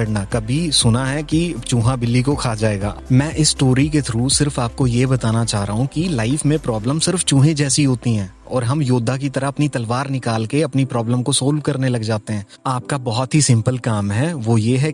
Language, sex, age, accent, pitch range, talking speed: Hindi, male, 30-49, native, 115-140 Hz, 135 wpm